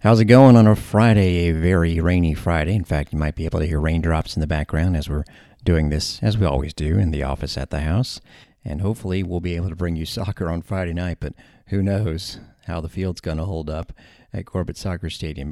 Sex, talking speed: male, 240 wpm